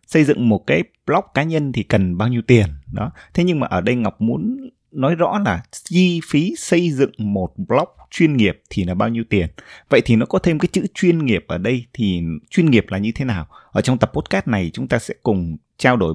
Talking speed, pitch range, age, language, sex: 240 wpm, 105-150 Hz, 20-39, Vietnamese, male